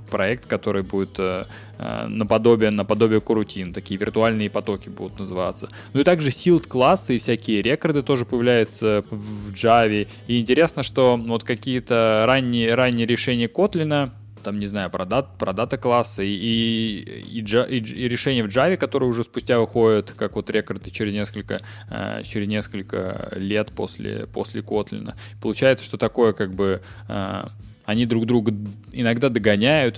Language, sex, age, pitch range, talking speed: Russian, male, 20-39, 100-120 Hz, 145 wpm